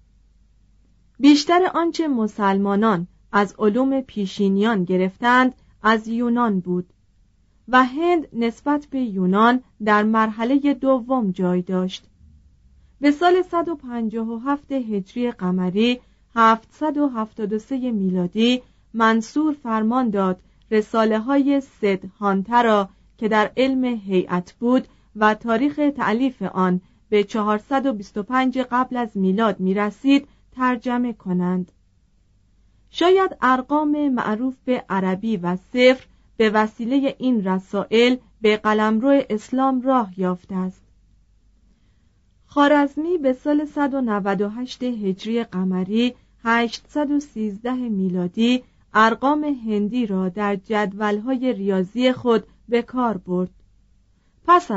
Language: Persian